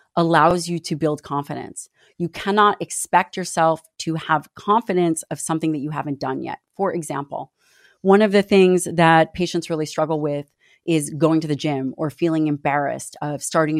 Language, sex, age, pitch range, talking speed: English, female, 30-49, 155-185 Hz, 175 wpm